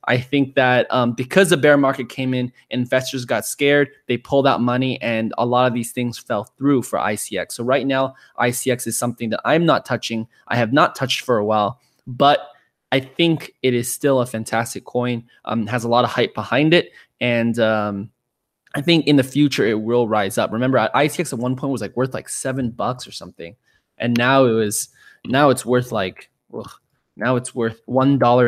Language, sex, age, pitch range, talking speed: English, male, 20-39, 115-130 Hz, 210 wpm